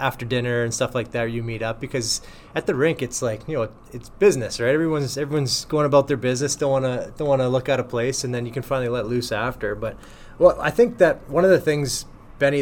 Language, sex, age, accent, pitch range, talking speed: English, male, 20-39, American, 120-140 Hz, 245 wpm